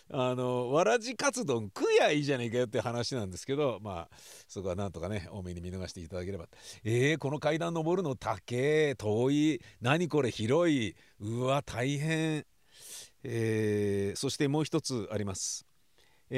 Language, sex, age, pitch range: Japanese, male, 50-69, 105-165 Hz